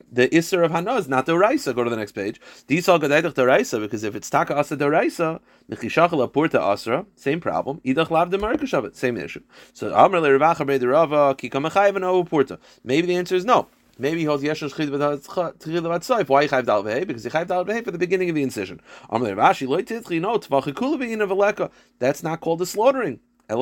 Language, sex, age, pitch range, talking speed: English, male, 30-49, 135-190 Hz, 205 wpm